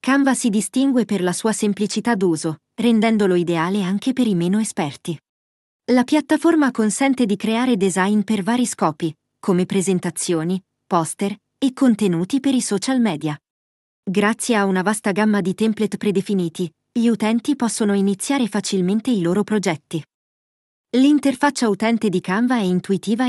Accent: native